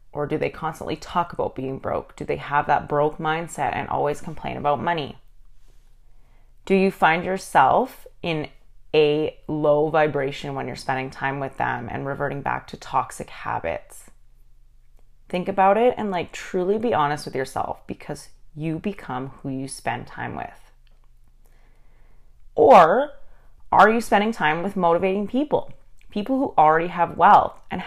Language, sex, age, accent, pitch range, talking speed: English, female, 30-49, American, 120-185 Hz, 155 wpm